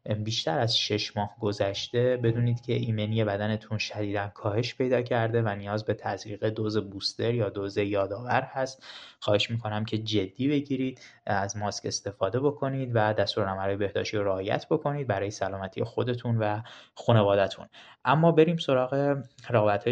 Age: 20-39